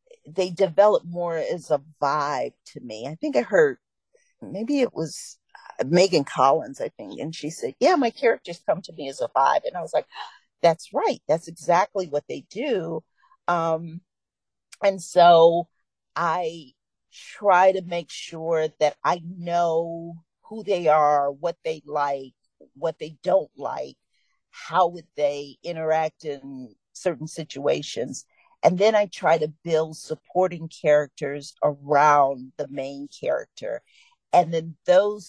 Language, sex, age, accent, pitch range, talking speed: English, female, 50-69, American, 145-180 Hz, 145 wpm